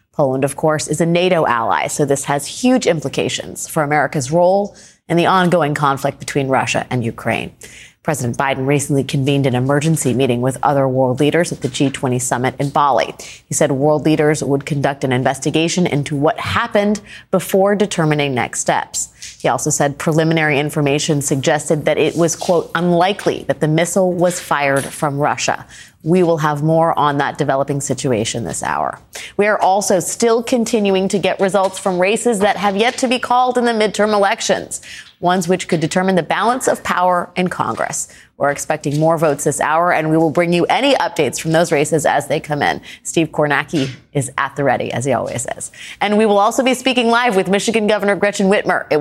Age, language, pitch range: 30-49, English, 140-185 Hz